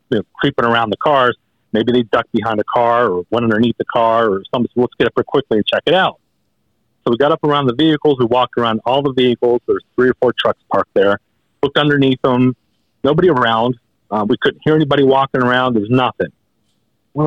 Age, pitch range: 40-59, 110-130 Hz